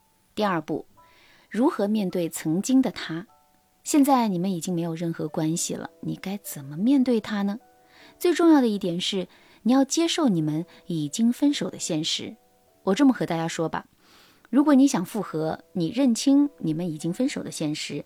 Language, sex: Chinese, female